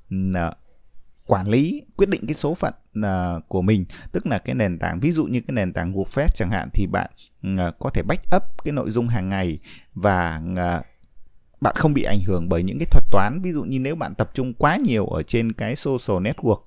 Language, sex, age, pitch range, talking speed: Vietnamese, male, 20-39, 90-125 Hz, 210 wpm